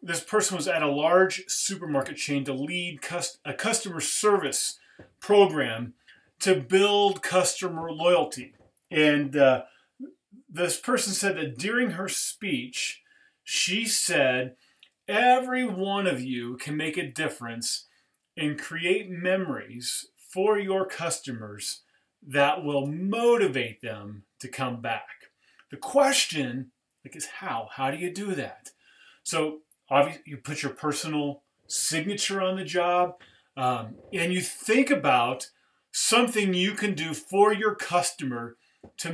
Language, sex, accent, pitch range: English, male, American, 140-195 Hz